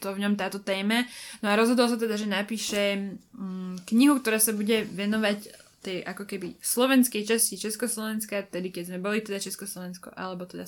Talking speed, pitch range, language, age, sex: 175 wpm, 200-235 Hz, Slovak, 20-39, female